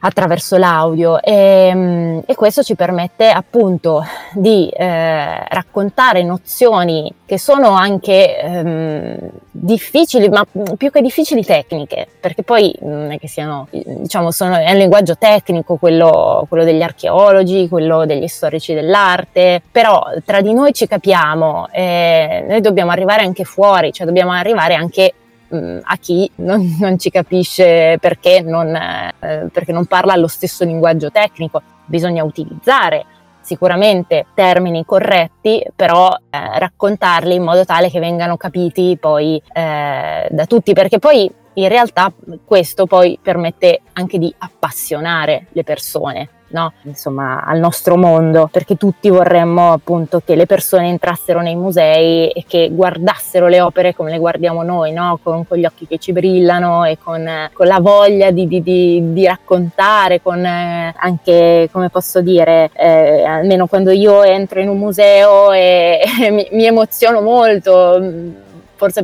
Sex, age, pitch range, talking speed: female, 20-39, 165-195 Hz, 145 wpm